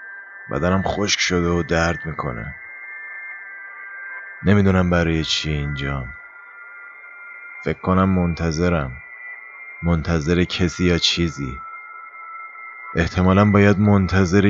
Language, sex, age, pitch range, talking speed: Persian, male, 30-49, 85-115 Hz, 85 wpm